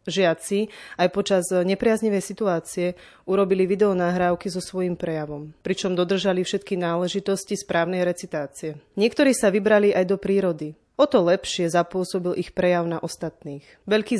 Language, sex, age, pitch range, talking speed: Slovak, female, 30-49, 170-195 Hz, 125 wpm